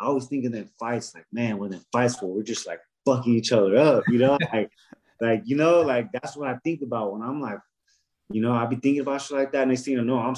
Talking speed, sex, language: 280 wpm, male, English